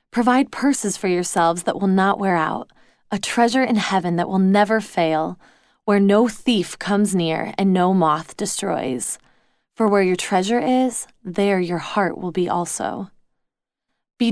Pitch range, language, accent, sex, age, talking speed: 190-230 Hz, English, American, female, 20-39, 160 wpm